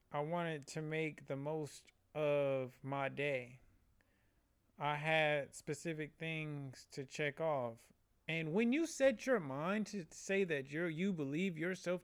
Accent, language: American, English